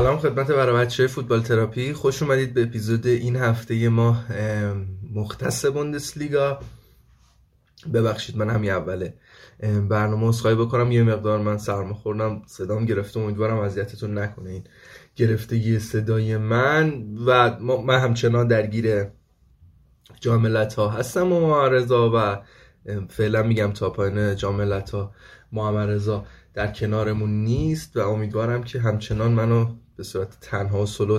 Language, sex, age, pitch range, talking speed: Persian, male, 20-39, 105-125 Hz, 120 wpm